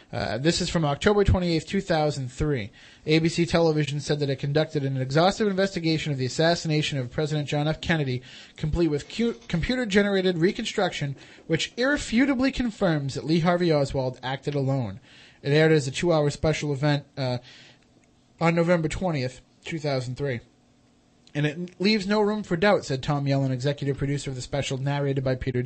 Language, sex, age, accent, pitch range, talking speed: English, male, 30-49, American, 135-170 Hz, 165 wpm